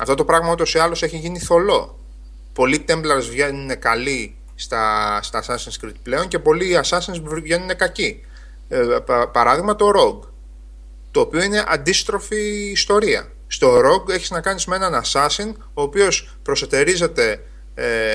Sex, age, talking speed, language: male, 30-49, 150 wpm, Greek